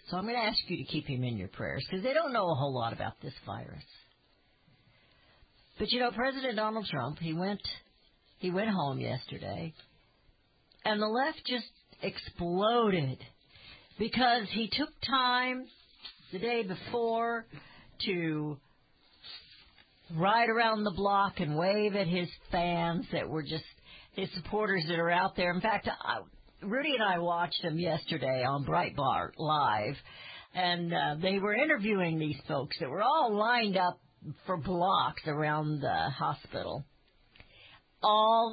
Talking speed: 150 wpm